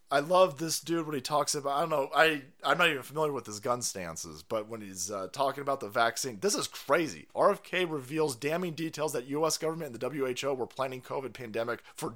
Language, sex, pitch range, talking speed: English, male, 125-180 Hz, 220 wpm